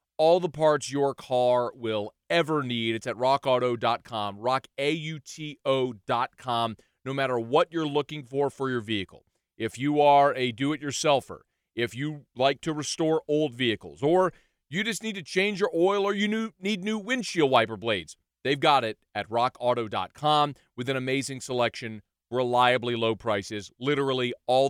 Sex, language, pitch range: male, English, 120-150 Hz